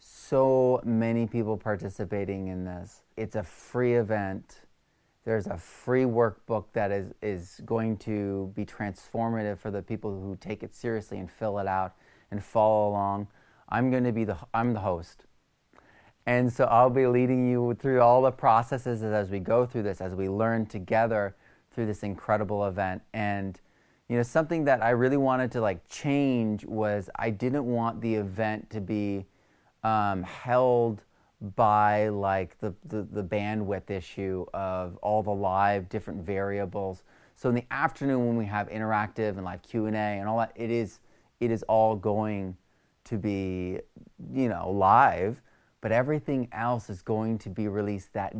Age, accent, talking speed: 30-49, American, 165 wpm